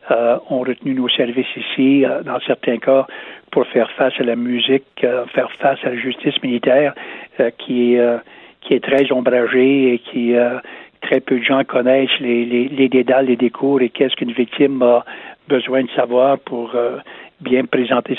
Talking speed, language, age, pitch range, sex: 185 wpm, French, 60-79, 125-135 Hz, male